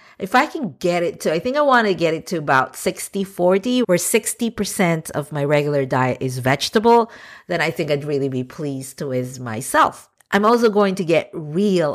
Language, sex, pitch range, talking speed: English, female, 145-205 Hz, 205 wpm